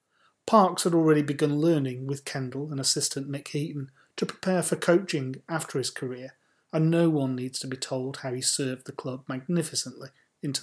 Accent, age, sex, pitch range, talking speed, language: British, 30-49, male, 130-155 Hz, 180 wpm, English